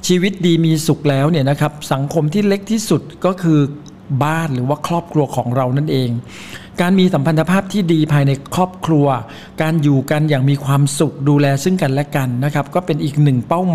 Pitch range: 140-175 Hz